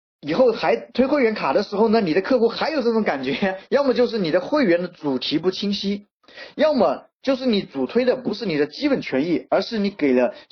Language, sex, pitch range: Chinese, male, 190-275 Hz